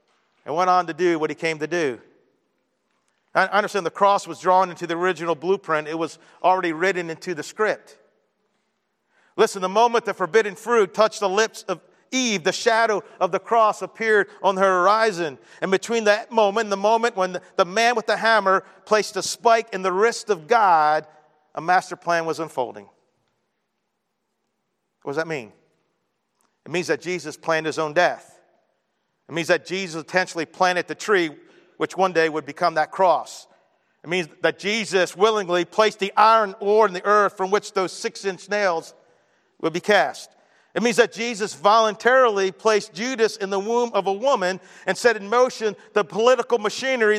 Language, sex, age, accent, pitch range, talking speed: English, male, 50-69, American, 175-215 Hz, 180 wpm